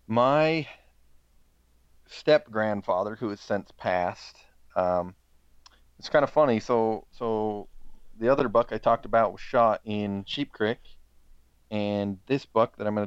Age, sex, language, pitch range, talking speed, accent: 30-49, male, English, 70-110 Hz, 140 wpm, American